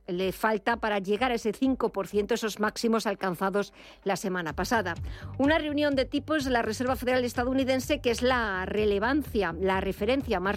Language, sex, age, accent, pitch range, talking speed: Spanish, female, 50-69, Spanish, 205-255 Hz, 165 wpm